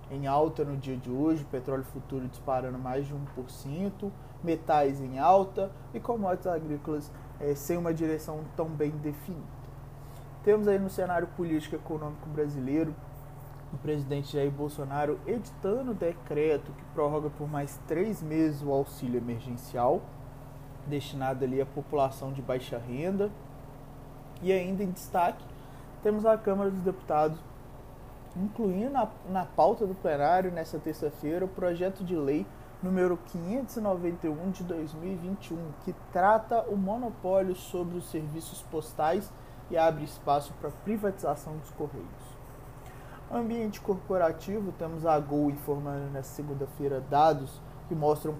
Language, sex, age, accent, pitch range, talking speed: Portuguese, male, 20-39, Brazilian, 140-175 Hz, 135 wpm